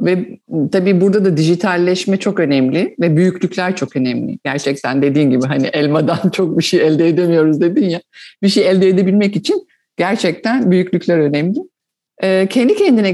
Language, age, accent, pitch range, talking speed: English, 50-69, Turkish, 175-220 Hz, 150 wpm